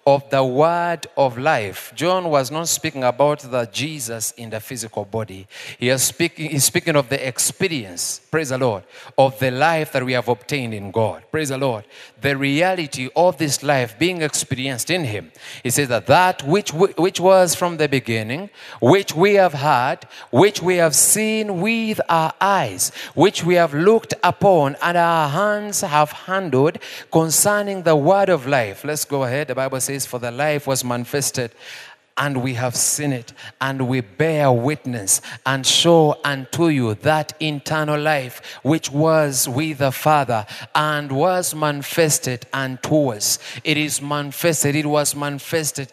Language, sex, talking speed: English, male, 165 wpm